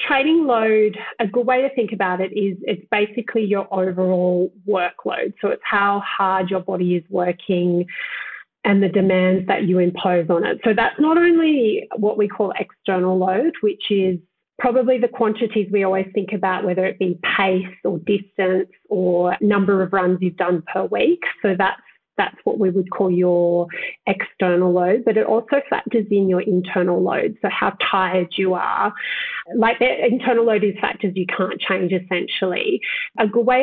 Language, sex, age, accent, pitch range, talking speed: English, female, 30-49, Australian, 185-225 Hz, 175 wpm